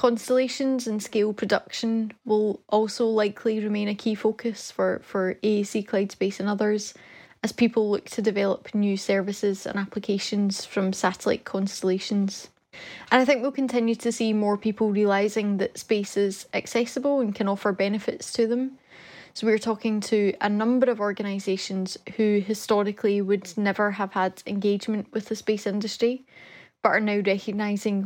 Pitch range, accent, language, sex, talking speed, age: 200-225 Hz, British, English, female, 155 wpm, 10-29